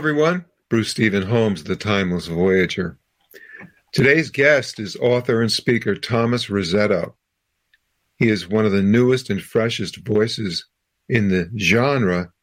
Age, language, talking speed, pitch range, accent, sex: 50-69, English, 130 wpm, 95-115 Hz, American, male